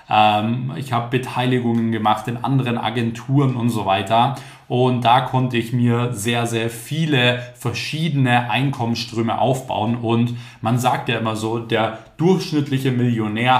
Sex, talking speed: male, 130 wpm